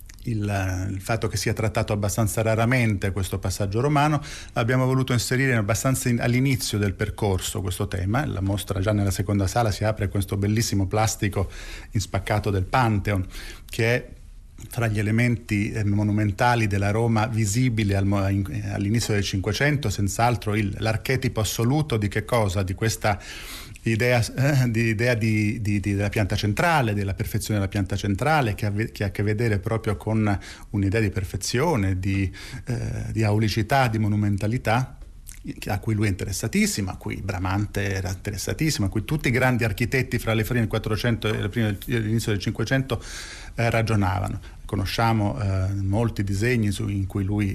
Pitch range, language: 100-115 Hz, Italian